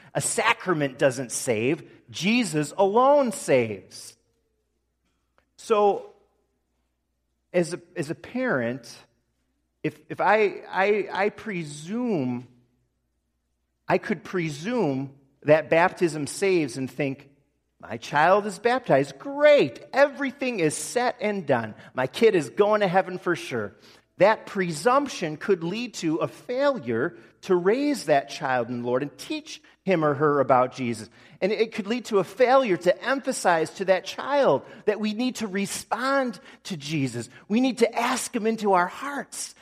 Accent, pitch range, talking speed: American, 140-230 Hz, 140 wpm